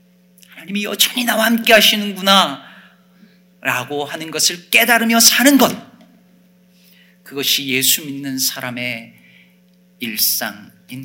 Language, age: Korean, 40-59